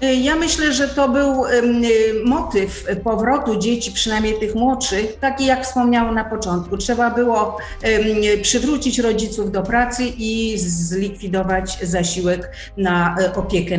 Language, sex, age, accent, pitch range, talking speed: Polish, female, 40-59, native, 200-250 Hz, 120 wpm